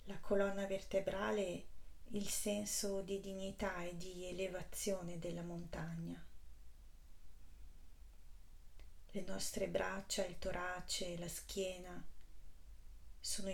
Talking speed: 90 wpm